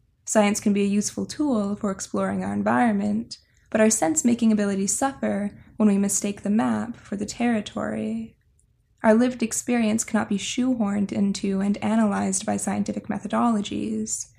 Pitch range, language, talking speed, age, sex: 200-230 Hz, English, 145 wpm, 10-29, female